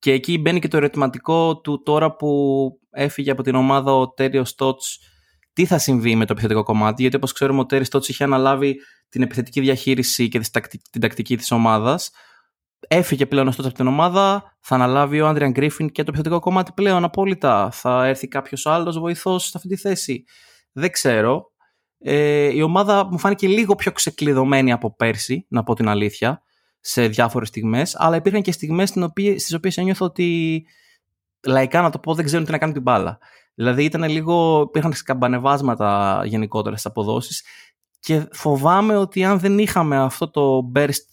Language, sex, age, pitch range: Greek, male, 20-39, 120-165 Hz